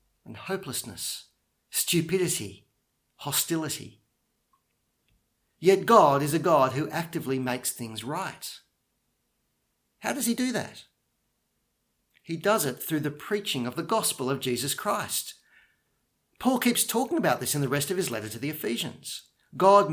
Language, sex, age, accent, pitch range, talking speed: English, male, 40-59, Australian, 130-170 Hz, 140 wpm